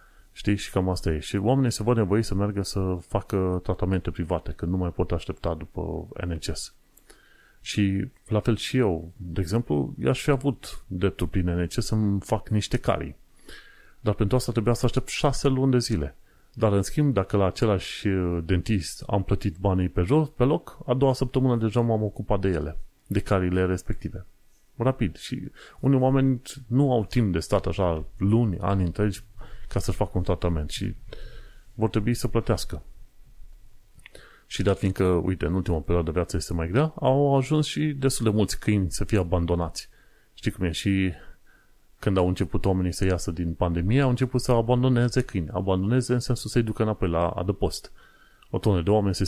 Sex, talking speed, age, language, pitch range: male, 185 wpm, 30-49, Romanian, 90-120 Hz